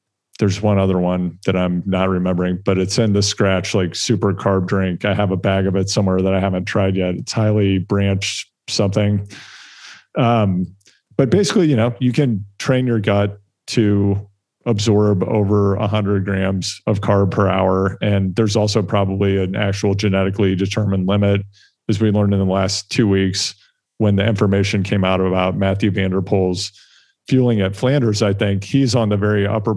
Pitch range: 100-110 Hz